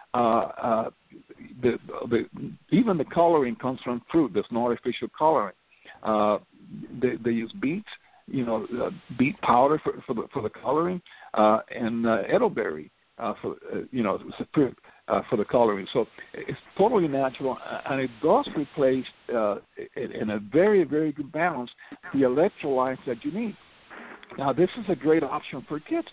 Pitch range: 120-160 Hz